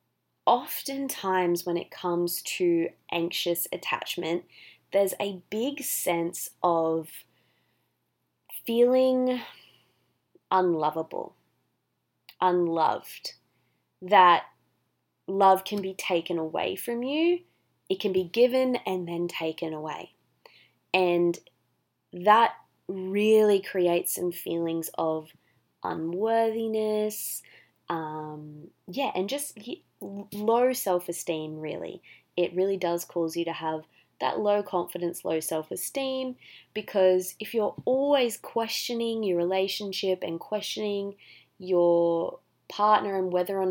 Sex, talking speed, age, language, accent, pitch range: female, 100 wpm, 20-39, English, Australian, 170-215 Hz